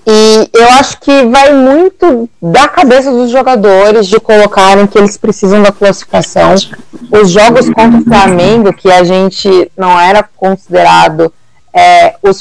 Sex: female